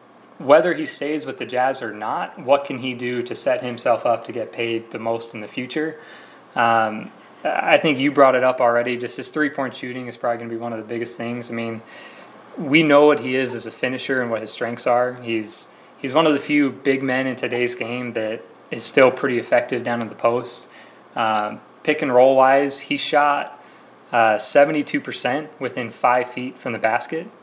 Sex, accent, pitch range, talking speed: male, American, 115-135 Hz, 210 wpm